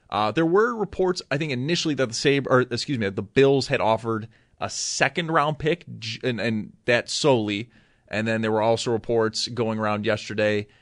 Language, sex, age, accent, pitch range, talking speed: English, male, 30-49, American, 110-140 Hz, 190 wpm